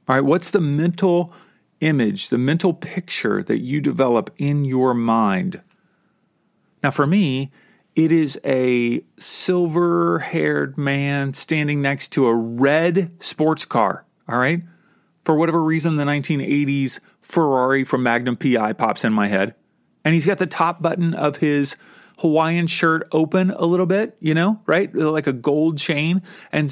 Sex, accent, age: male, American, 40-59